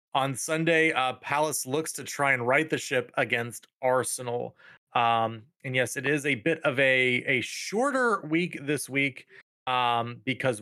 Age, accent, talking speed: 30-49, American, 165 wpm